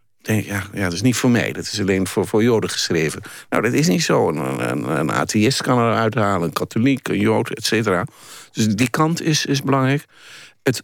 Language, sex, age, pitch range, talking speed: Dutch, male, 50-69, 95-125 Hz, 220 wpm